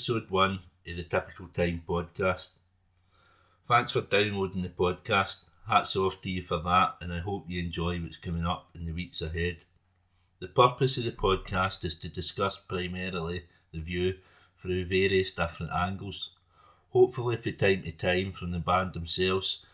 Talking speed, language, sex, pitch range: 165 wpm, English, male, 85-95 Hz